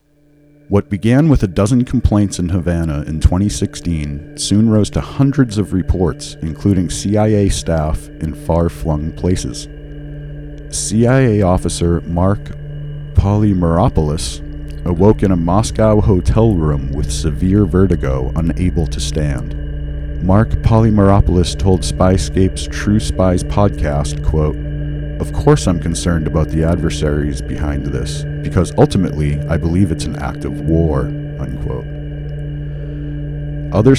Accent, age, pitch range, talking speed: American, 40-59, 75-105 Hz, 115 wpm